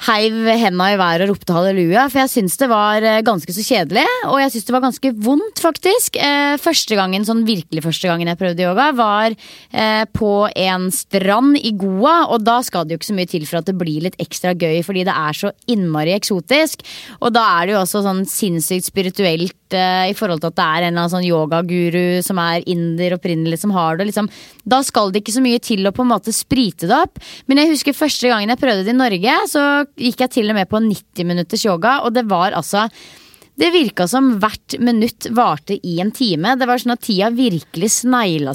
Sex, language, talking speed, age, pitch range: female, English, 205 wpm, 20-39, 185-260 Hz